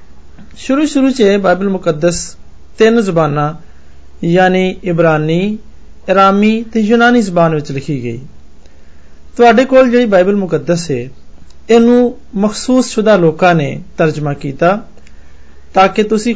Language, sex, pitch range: Hindi, male, 135-210 Hz